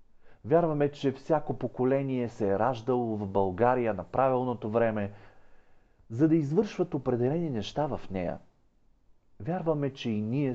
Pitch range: 105-155 Hz